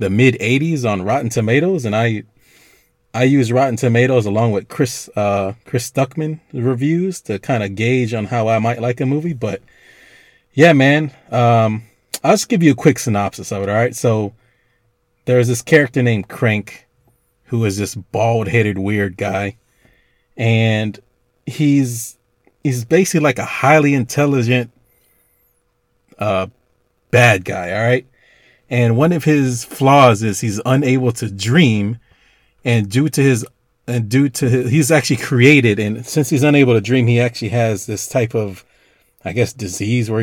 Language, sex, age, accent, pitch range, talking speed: English, male, 30-49, American, 110-135 Hz, 160 wpm